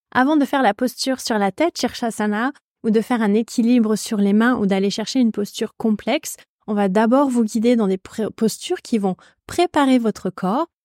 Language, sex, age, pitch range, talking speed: French, female, 20-39, 210-260 Hz, 200 wpm